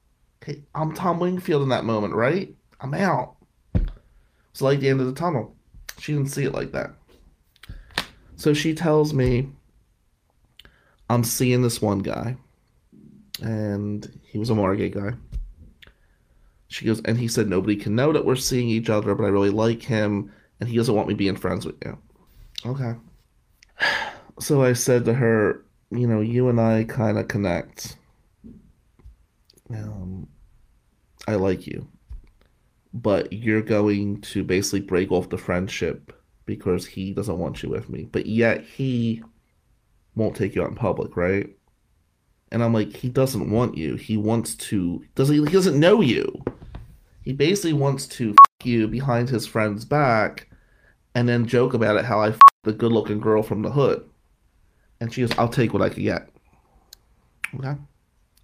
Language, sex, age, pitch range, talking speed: English, male, 30-49, 100-130 Hz, 165 wpm